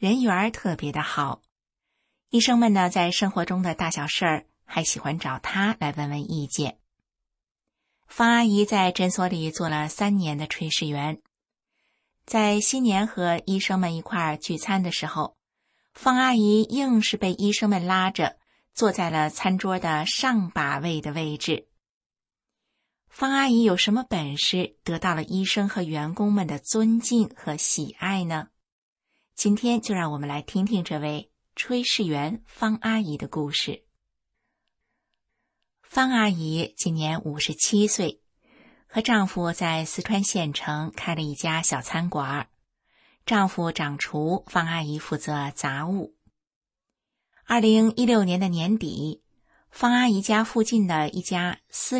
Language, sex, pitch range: Chinese, female, 155-215 Hz